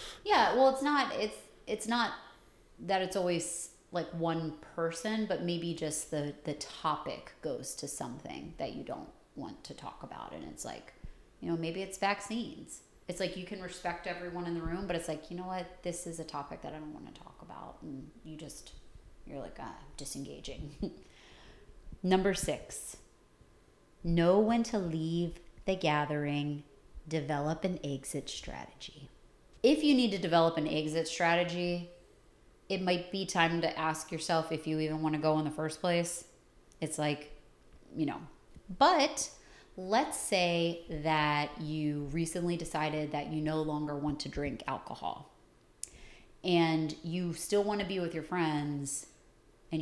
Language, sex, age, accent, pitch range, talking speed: English, female, 30-49, American, 155-180 Hz, 165 wpm